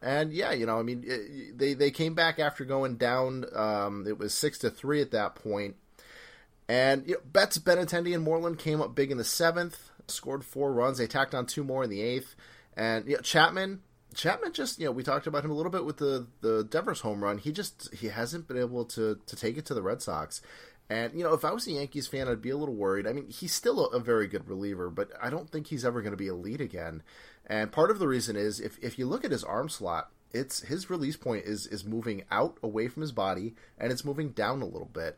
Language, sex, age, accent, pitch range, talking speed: English, male, 30-49, American, 105-150 Hz, 255 wpm